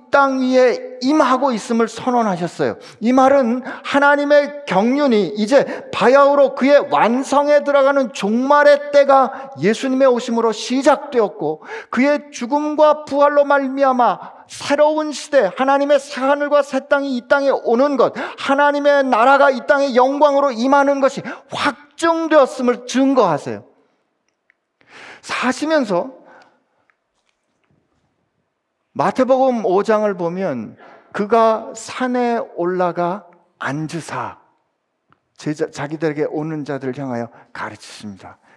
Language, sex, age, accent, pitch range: Korean, male, 40-59, native, 175-280 Hz